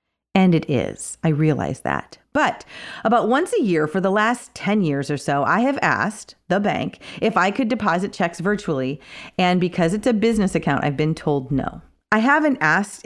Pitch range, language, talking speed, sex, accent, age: 160-225 Hz, English, 195 wpm, female, American, 40-59